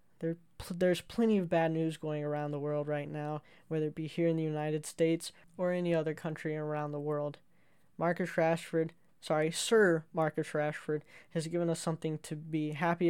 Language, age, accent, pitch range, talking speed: English, 10-29, American, 155-170 Hz, 180 wpm